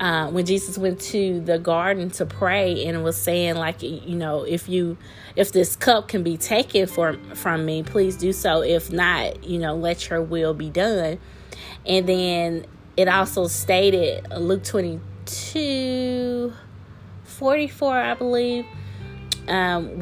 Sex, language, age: female, English, 20-39